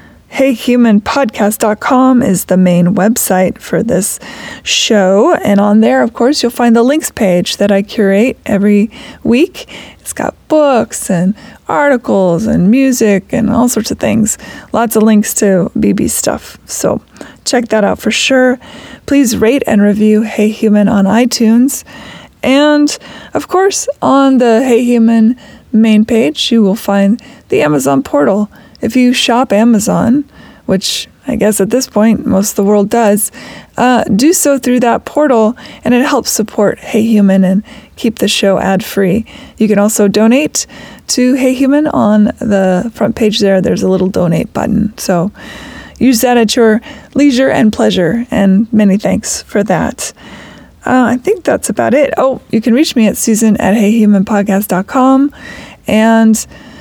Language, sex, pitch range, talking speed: English, female, 205-250 Hz, 155 wpm